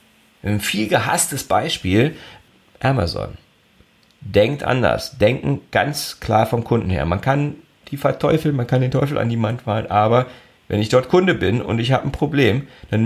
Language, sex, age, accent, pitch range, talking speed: German, male, 40-59, German, 95-120 Hz, 170 wpm